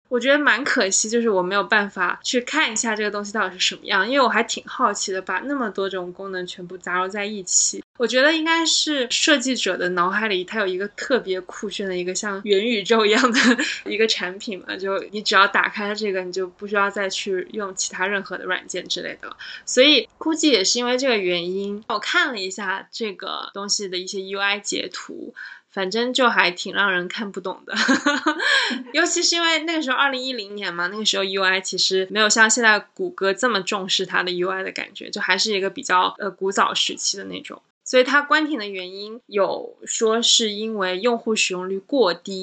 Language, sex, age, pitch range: Chinese, female, 20-39, 190-245 Hz